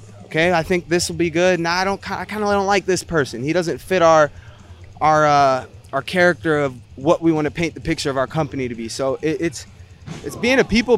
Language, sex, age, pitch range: English, male, 20-39, 125-170 Hz